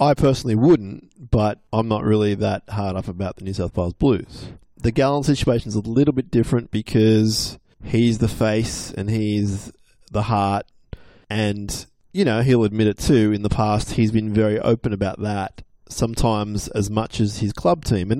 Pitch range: 105-120 Hz